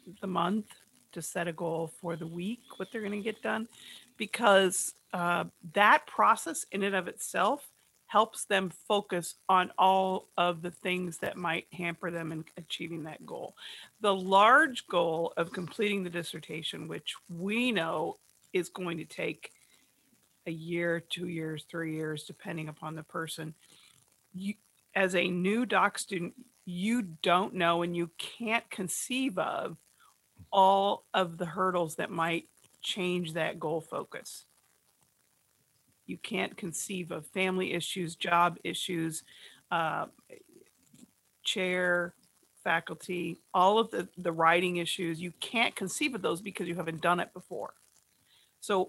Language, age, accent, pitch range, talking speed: English, 40-59, American, 165-195 Hz, 140 wpm